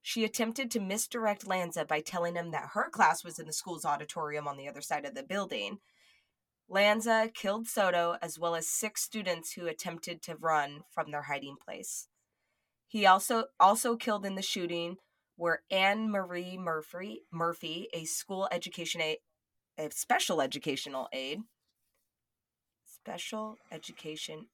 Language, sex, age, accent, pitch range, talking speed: English, female, 20-39, American, 155-210 Hz, 150 wpm